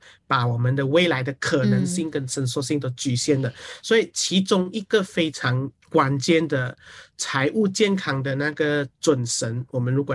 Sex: male